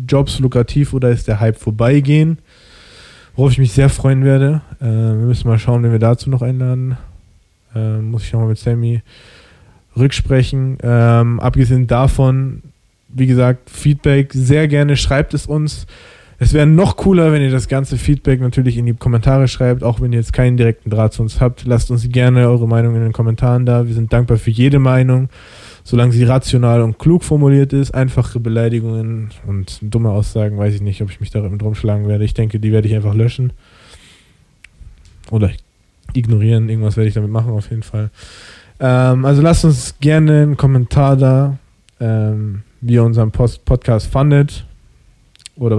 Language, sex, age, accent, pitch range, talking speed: German, male, 20-39, German, 110-130 Hz, 175 wpm